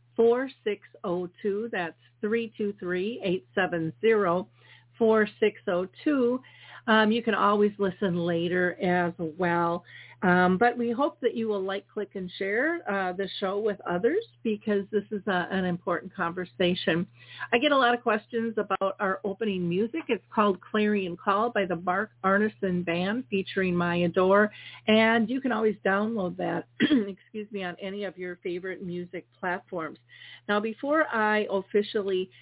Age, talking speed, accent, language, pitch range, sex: 50-69, 135 wpm, American, English, 180-215 Hz, female